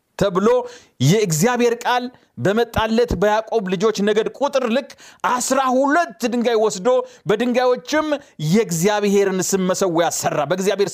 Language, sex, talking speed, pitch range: Amharic, male, 100 wpm, 215-290 Hz